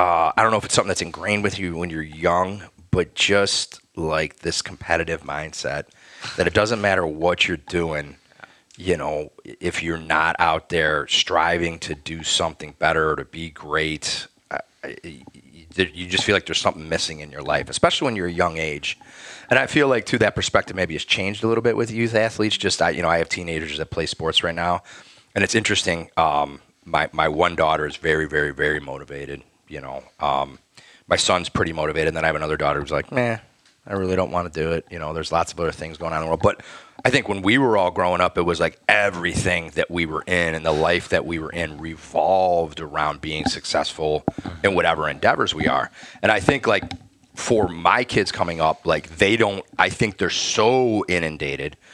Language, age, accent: English, 30-49, American